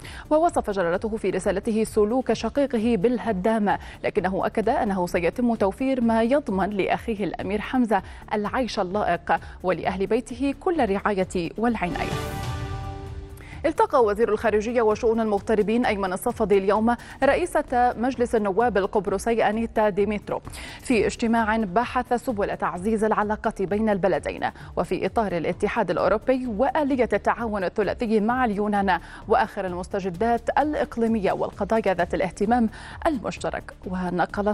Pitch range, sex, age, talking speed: 190-235 Hz, female, 30-49, 110 wpm